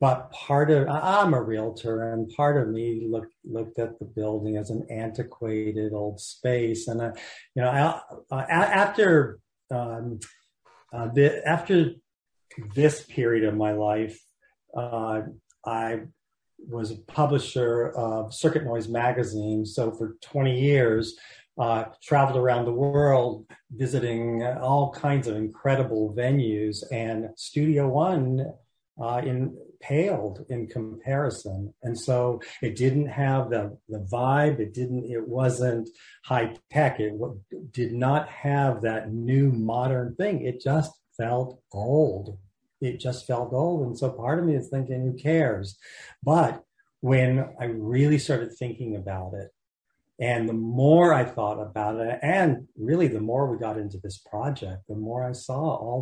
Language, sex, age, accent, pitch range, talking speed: English, male, 40-59, American, 110-140 Hz, 150 wpm